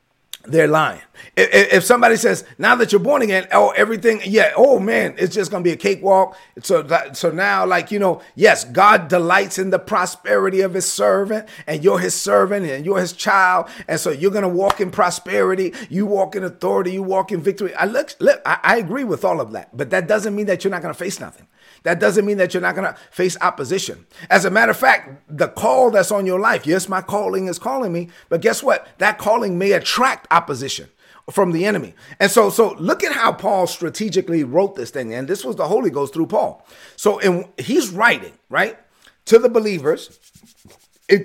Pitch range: 175-210 Hz